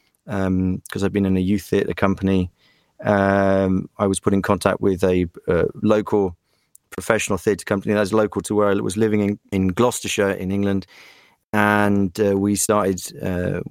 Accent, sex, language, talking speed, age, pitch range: British, male, English, 175 wpm, 30-49, 95-110 Hz